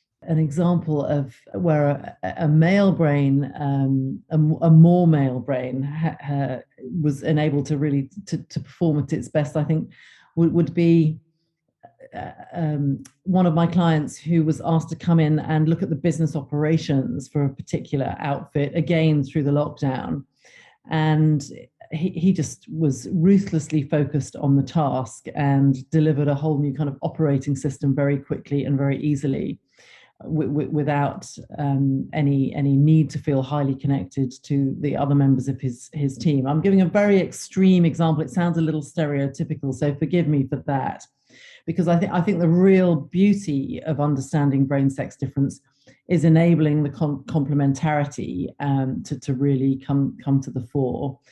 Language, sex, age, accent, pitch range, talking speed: English, female, 40-59, British, 140-160 Hz, 165 wpm